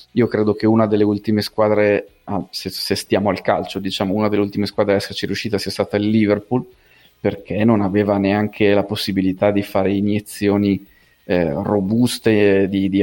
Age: 30-49